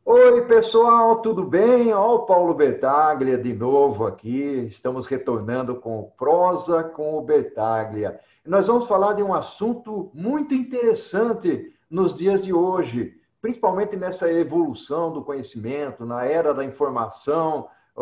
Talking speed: 135 wpm